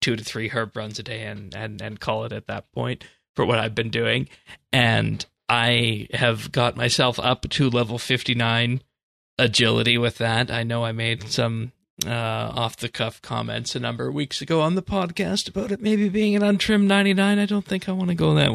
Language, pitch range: English, 115-135 Hz